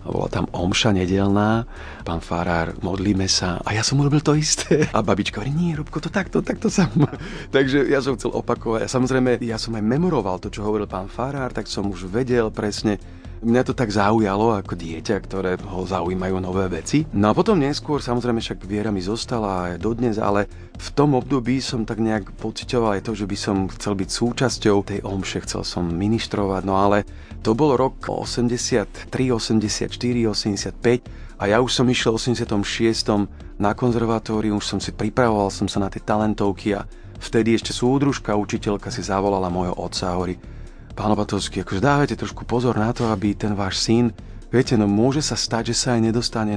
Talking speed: 185 wpm